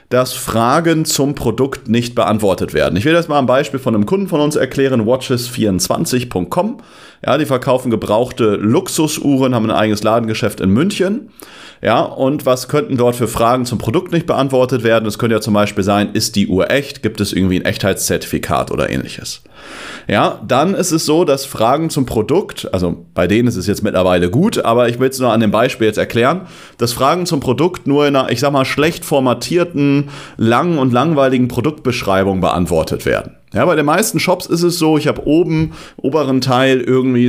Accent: German